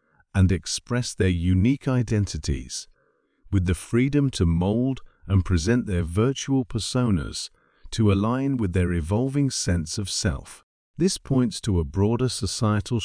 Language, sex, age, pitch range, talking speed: English, male, 50-69, 90-125 Hz, 135 wpm